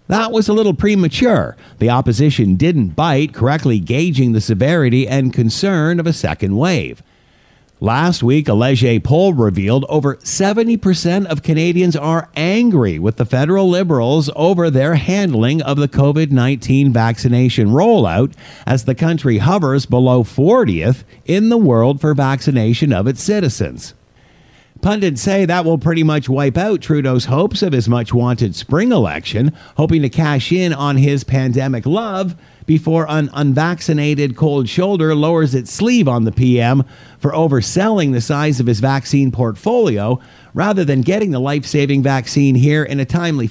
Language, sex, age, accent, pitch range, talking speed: English, male, 50-69, American, 125-165 Hz, 150 wpm